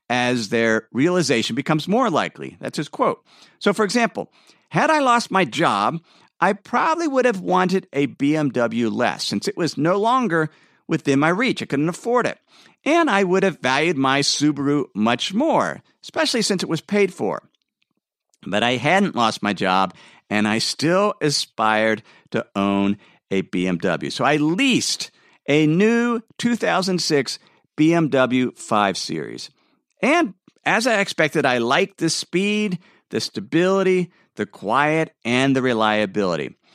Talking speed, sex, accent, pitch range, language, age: 145 wpm, male, American, 130-200 Hz, English, 50-69